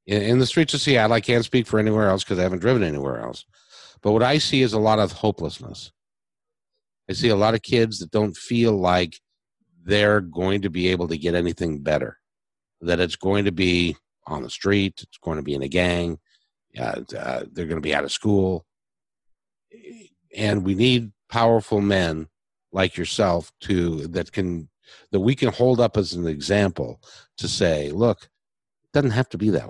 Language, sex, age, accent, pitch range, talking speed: English, male, 50-69, American, 95-125 Hz, 190 wpm